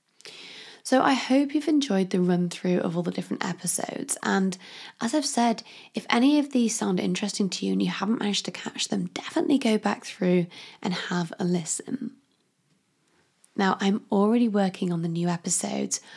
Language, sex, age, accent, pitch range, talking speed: English, female, 20-39, British, 185-235 Hz, 180 wpm